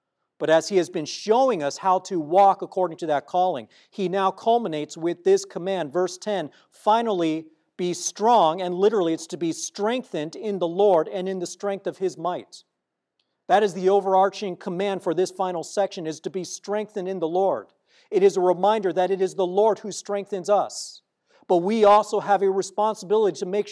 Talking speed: 195 wpm